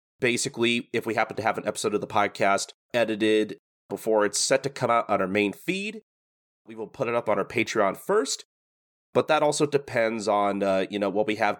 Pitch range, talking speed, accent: 100-145 Hz, 215 wpm, American